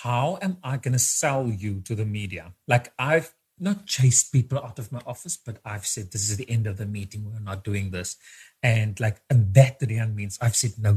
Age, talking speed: 30-49, 225 wpm